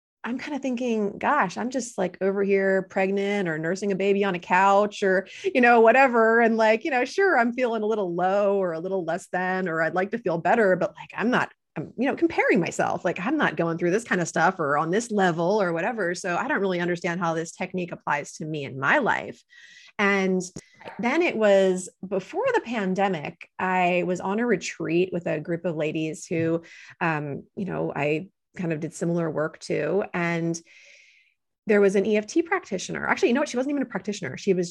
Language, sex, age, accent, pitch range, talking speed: English, female, 30-49, American, 170-215 Hz, 215 wpm